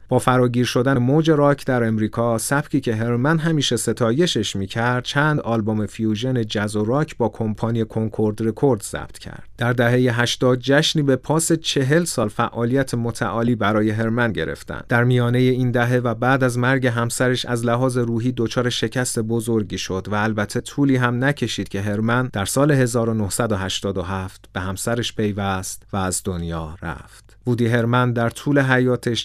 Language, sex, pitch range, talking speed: Persian, male, 110-125 Hz, 155 wpm